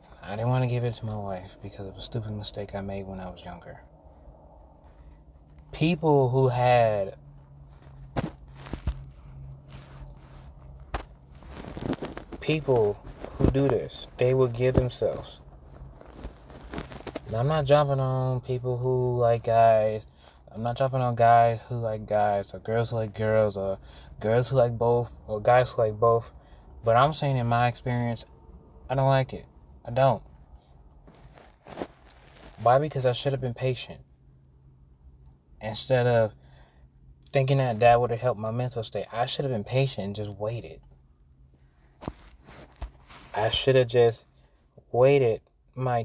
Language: English